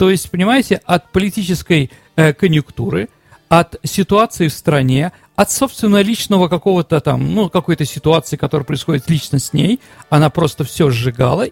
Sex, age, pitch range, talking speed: male, 40-59, 145-205 Hz, 145 wpm